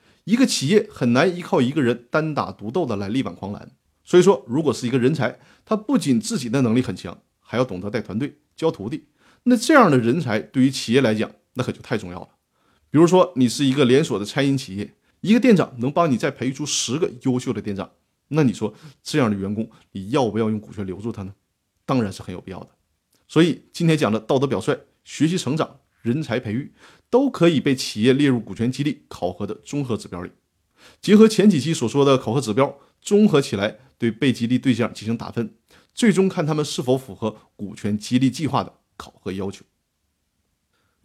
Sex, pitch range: male, 110-160 Hz